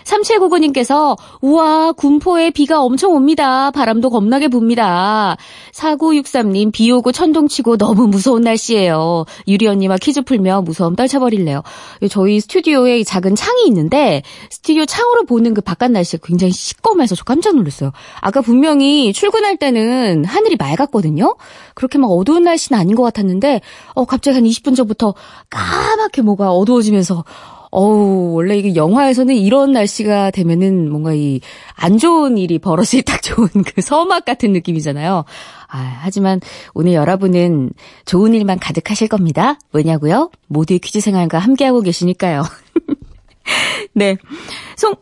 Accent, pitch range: native, 185-285 Hz